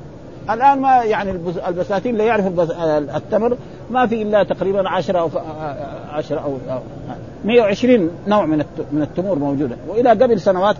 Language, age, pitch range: Arabic, 50-69, 160-225 Hz